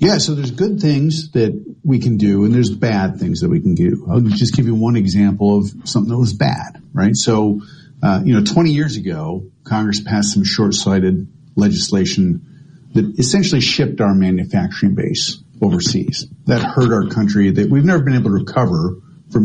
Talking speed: 185 wpm